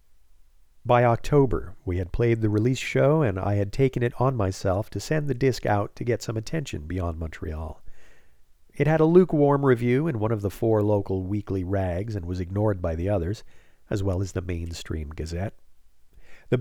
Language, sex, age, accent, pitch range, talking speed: English, male, 50-69, American, 90-120 Hz, 190 wpm